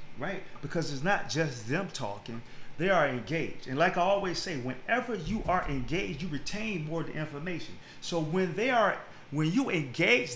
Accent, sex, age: American, male, 40-59